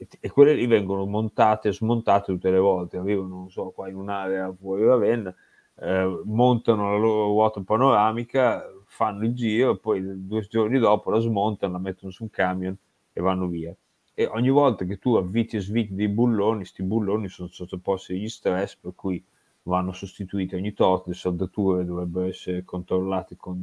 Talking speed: 180 wpm